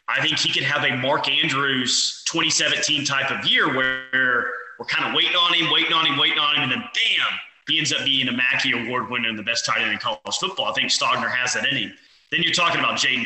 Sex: male